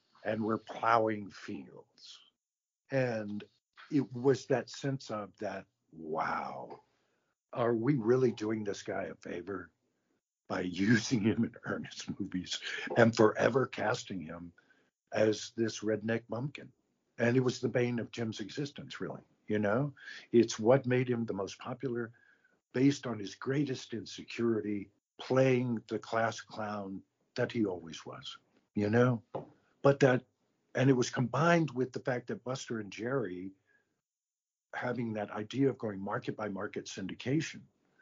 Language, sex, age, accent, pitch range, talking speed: English, male, 60-79, American, 110-135 Hz, 140 wpm